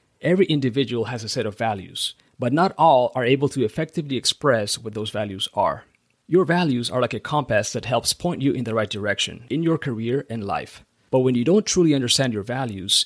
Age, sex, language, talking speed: 30-49, male, English, 210 wpm